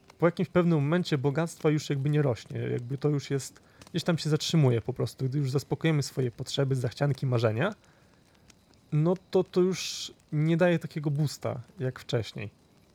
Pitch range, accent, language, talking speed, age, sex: 125-150 Hz, native, Polish, 165 wpm, 30-49, male